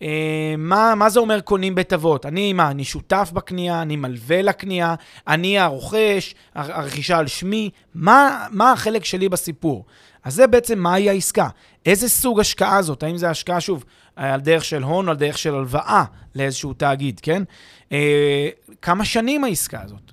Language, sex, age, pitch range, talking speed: Hebrew, male, 30-49, 155-200 Hz, 165 wpm